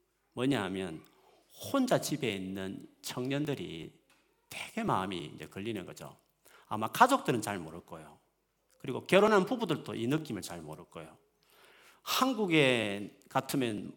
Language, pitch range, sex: Korean, 110-175 Hz, male